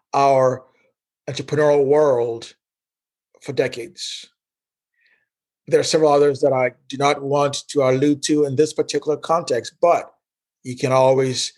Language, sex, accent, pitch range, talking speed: English, male, American, 130-175 Hz, 130 wpm